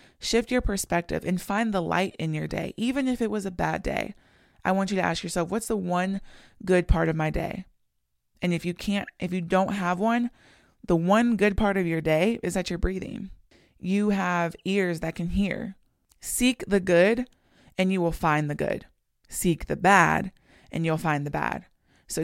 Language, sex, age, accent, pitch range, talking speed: English, female, 20-39, American, 165-200 Hz, 200 wpm